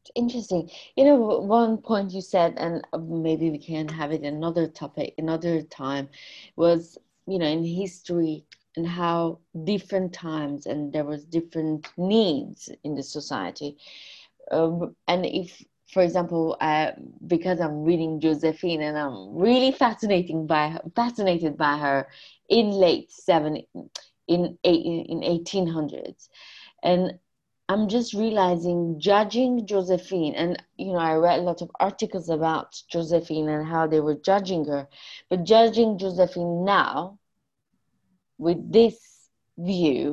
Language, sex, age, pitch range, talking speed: English, female, 20-39, 160-190 Hz, 135 wpm